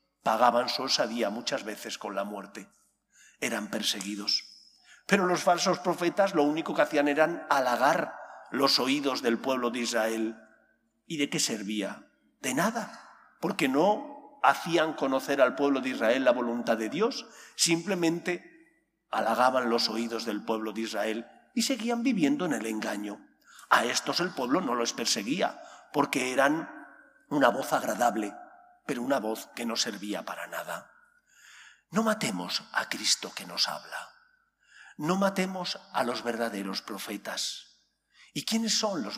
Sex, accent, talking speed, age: male, Spanish, 145 wpm, 50-69